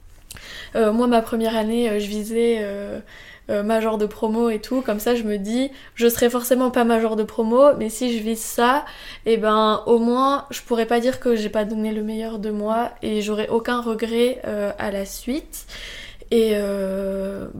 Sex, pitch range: female, 220-255 Hz